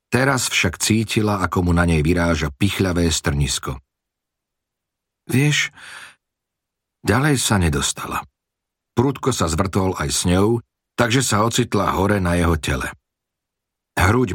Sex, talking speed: male, 115 wpm